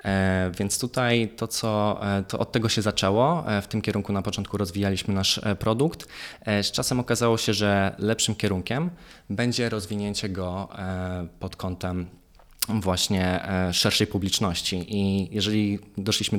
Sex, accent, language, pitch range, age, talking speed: male, native, Polish, 90-105 Hz, 20-39, 125 wpm